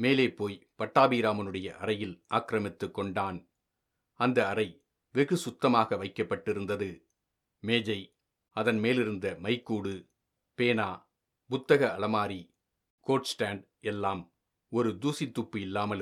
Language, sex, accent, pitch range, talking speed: Tamil, male, native, 100-120 Hz, 90 wpm